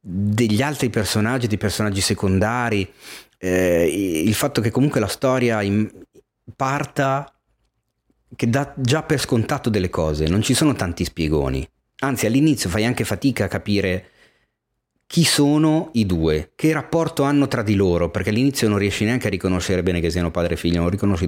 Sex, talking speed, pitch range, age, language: male, 165 wpm, 90-125 Hz, 30-49, Italian